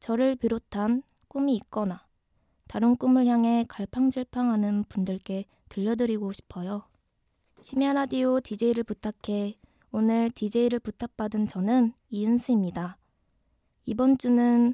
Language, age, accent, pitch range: Korean, 20-39, native, 205-245 Hz